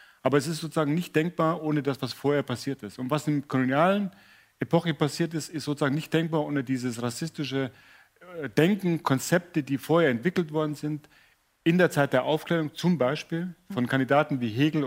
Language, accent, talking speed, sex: German, German, 180 wpm, male